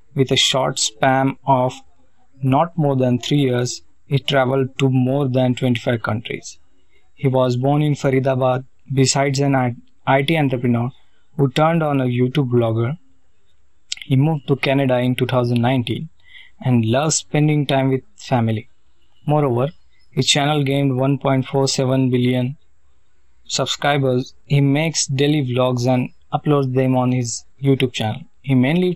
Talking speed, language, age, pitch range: 135 wpm, English, 20-39, 120-140 Hz